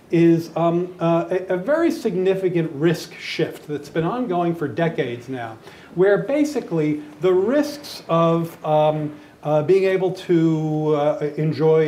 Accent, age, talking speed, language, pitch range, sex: American, 40-59, 135 wpm, English, 150-195 Hz, male